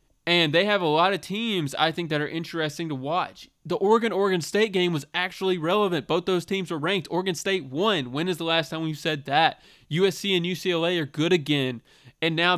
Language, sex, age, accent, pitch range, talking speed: English, male, 20-39, American, 135-170 Hz, 215 wpm